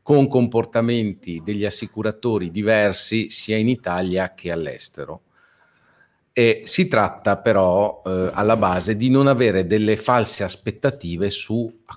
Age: 40-59